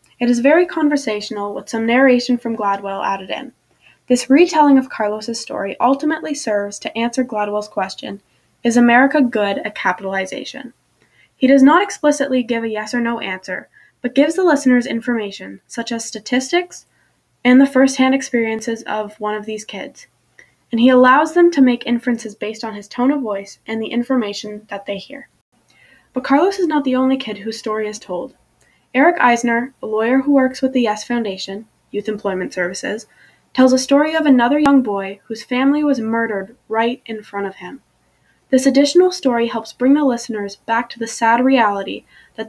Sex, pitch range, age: female, 215-270 Hz, 10-29